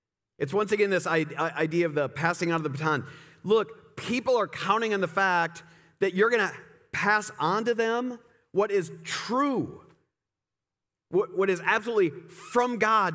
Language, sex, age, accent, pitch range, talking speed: English, male, 40-59, American, 140-195 Hz, 160 wpm